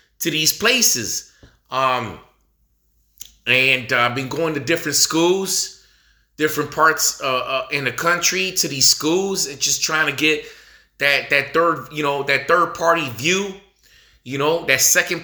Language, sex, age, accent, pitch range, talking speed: English, male, 20-39, American, 135-185 Hz, 160 wpm